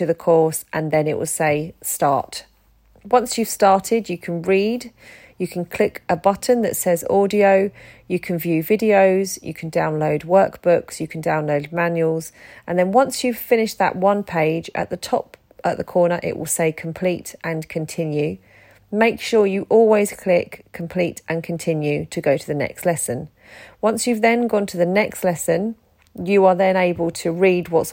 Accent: British